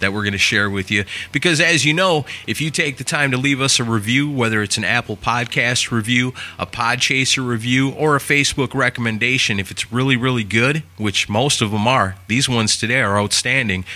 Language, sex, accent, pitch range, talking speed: English, male, American, 105-145 Hz, 215 wpm